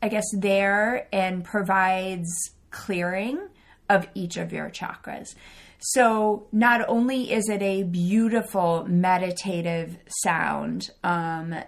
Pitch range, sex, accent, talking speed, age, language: 170-200 Hz, female, American, 110 wpm, 30-49, English